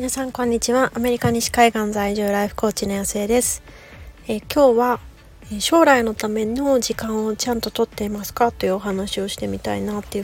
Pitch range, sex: 200-240 Hz, female